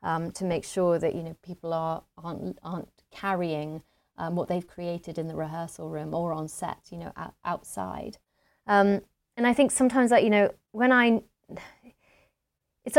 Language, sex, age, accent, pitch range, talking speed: English, female, 30-49, British, 165-200 Hz, 175 wpm